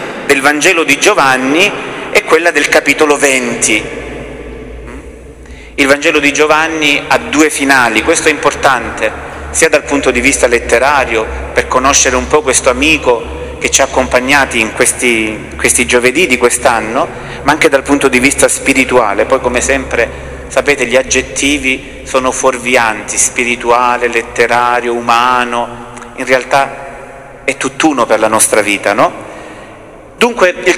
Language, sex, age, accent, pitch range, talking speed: Italian, male, 40-59, native, 125-155 Hz, 135 wpm